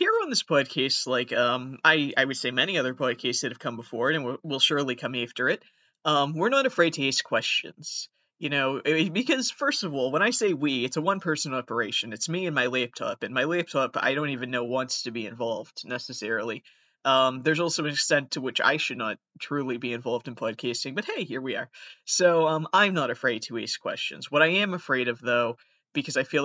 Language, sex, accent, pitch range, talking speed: English, male, American, 130-165 Hz, 225 wpm